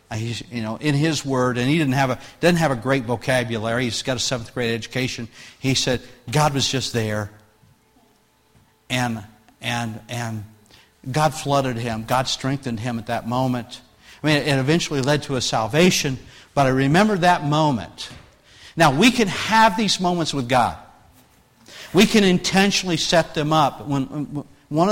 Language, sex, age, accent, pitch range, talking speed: English, male, 50-69, American, 130-210 Hz, 165 wpm